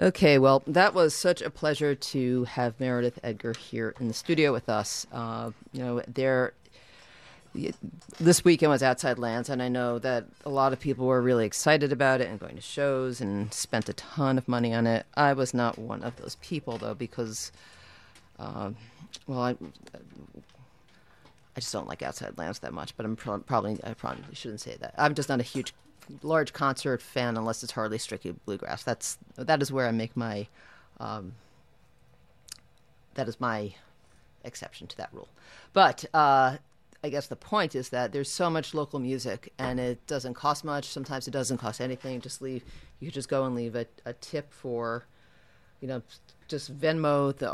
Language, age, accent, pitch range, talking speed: English, 40-59, American, 115-140 Hz, 185 wpm